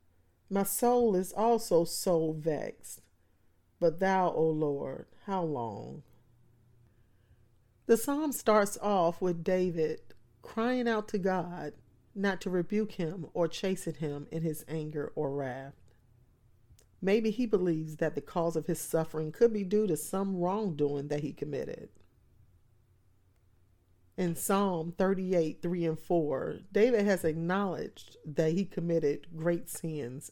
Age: 40-59